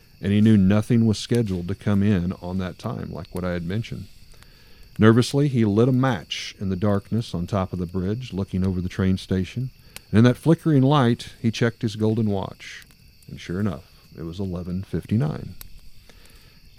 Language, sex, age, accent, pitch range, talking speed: English, male, 40-59, American, 90-115 Hz, 180 wpm